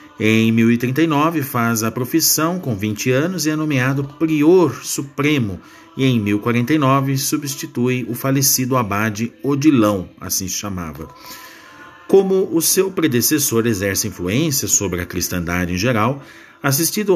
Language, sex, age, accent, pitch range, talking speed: Portuguese, male, 50-69, Brazilian, 110-155 Hz, 125 wpm